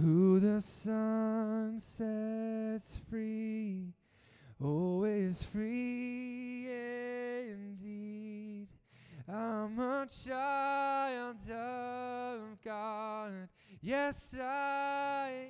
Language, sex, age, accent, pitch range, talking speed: English, male, 20-39, American, 190-225 Hz, 60 wpm